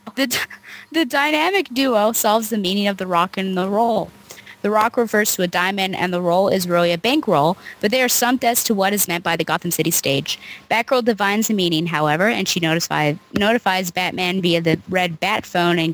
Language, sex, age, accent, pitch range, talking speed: English, female, 20-39, American, 175-220 Hz, 210 wpm